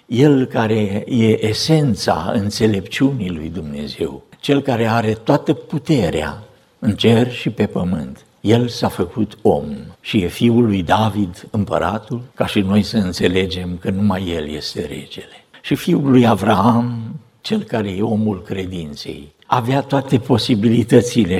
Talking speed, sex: 135 wpm, male